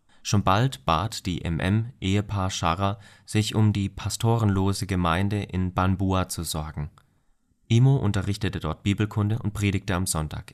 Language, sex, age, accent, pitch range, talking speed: German, male, 30-49, German, 90-105 Hz, 130 wpm